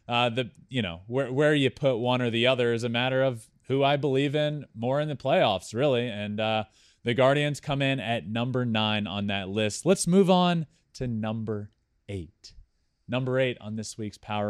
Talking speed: 205 wpm